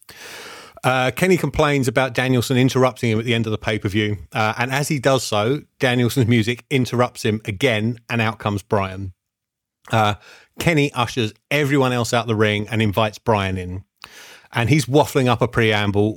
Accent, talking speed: British, 170 wpm